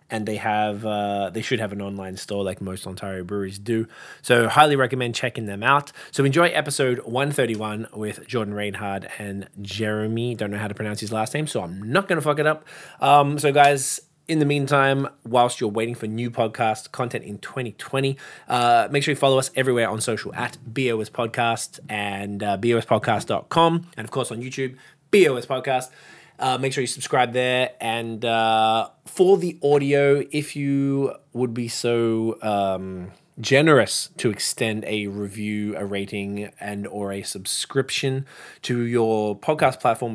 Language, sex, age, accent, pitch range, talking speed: English, male, 20-39, Australian, 105-135 Hz, 170 wpm